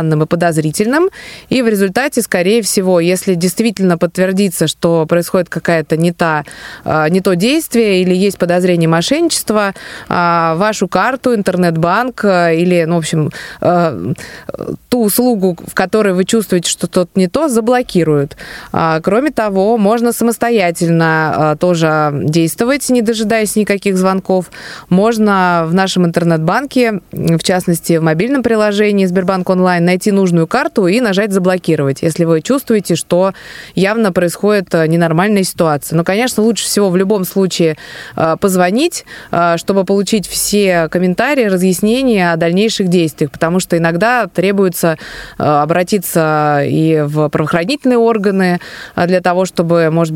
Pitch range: 170-210 Hz